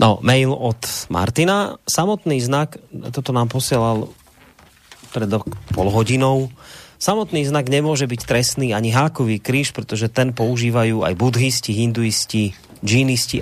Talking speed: 130 wpm